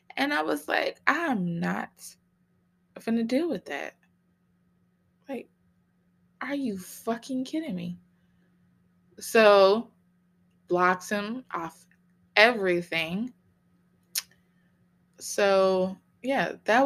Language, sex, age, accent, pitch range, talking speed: English, female, 20-39, American, 160-200 Hz, 85 wpm